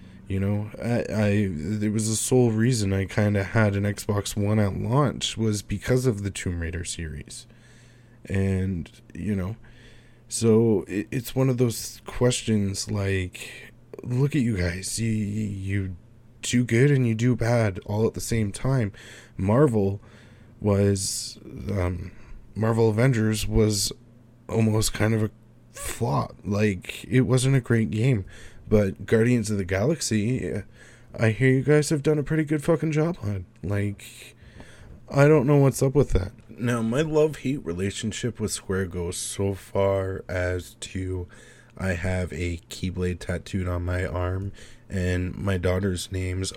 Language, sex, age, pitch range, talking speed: English, male, 20-39, 95-120 Hz, 150 wpm